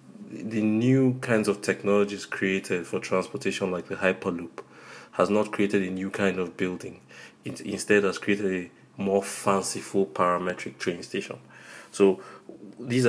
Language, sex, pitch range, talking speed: English, male, 90-105 Hz, 140 wpm